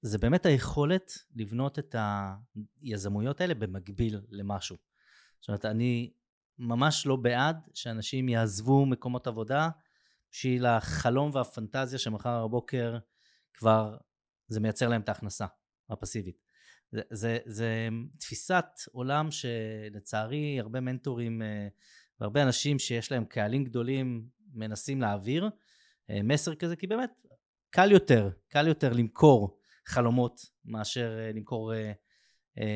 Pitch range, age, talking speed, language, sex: 110-135 Hz, 20-39, 110 wpm, Hebrew, male